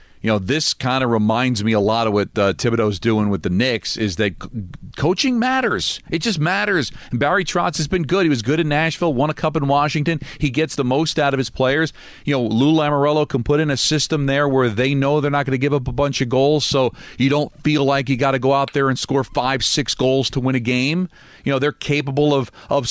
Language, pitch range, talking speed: English, 120-150 Hz, 250 wpm